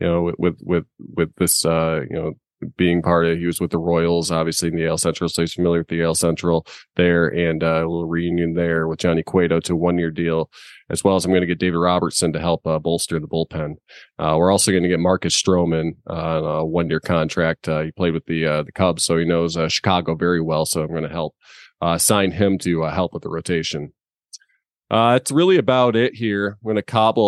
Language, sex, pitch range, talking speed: English, male, 80-95 Hz, 245 wpm